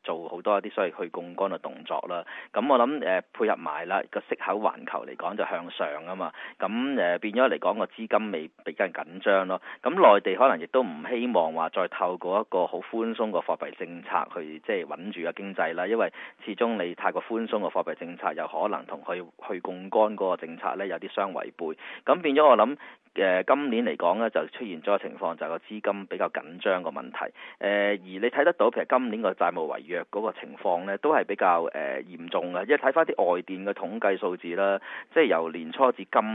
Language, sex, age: Chinese, male, 30-49